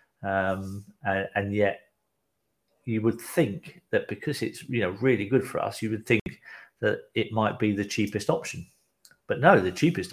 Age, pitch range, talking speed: 40-59, 95-115 Hz, 180 wpm